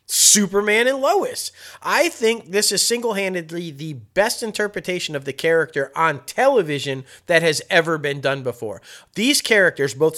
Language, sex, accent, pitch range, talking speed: English, male, American, 160-210 Hz, 145 wpm